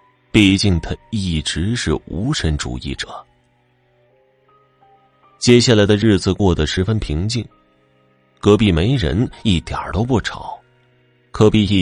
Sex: male